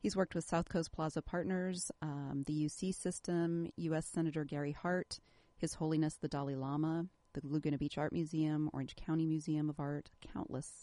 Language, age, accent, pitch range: English, 40-59, American, 145-175 Hz